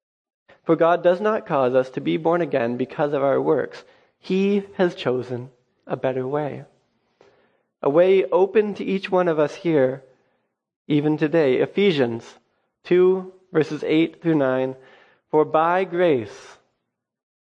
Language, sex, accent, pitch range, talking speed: English, male, American, 135-180 Hz, 140 wpm